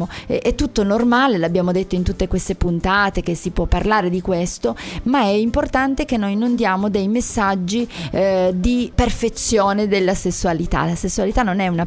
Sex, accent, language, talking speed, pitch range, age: female, native, Italian, 170 wpm, 185-225 Hz, 30-49